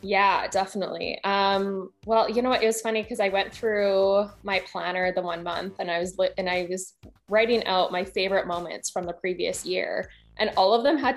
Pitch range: 175-215 Hz